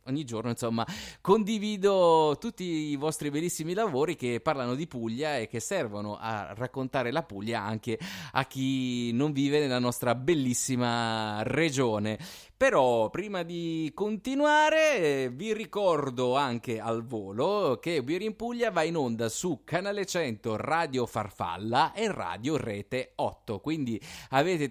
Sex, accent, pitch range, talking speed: male, native, 115-160 Hz, 135 wpm